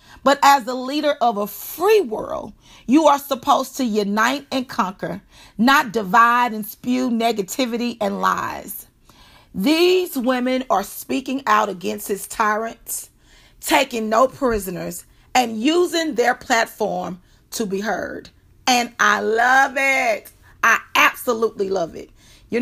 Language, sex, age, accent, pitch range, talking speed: English, female, 40-59, American, 210-275 Hz, 130 wpm